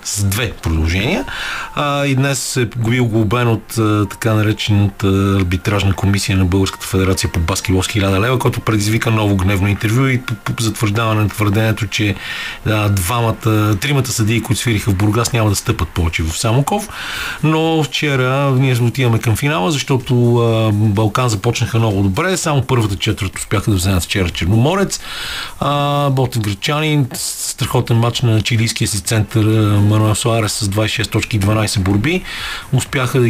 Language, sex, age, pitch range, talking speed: Bulgarian, male, 40-59, 105-125 Hz, 150 wpm